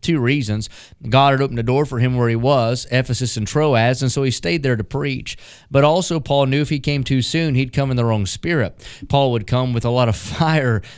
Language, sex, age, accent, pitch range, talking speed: English, male, 30-49, American, 120-140 Hz, 245 wpm